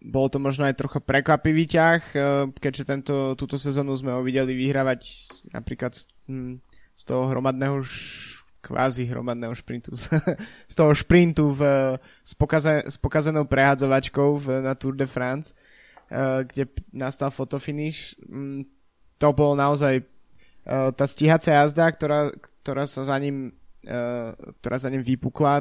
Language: Slovak